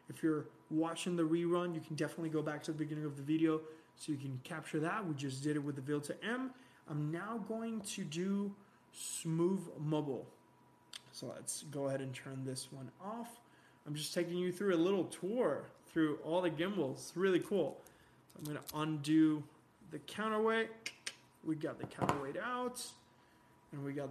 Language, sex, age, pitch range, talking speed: English, male, 20-39, 145-190 Hz, 185 wpm